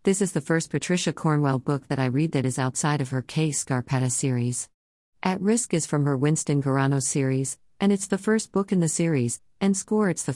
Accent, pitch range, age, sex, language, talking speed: American, 130-160 Hz, 50-69, female, English, 220 wpm